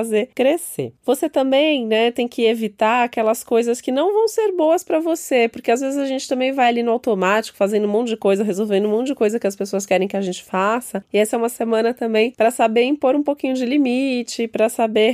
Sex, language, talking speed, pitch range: female, Portuguese, 240 wpm, 200-245 Hz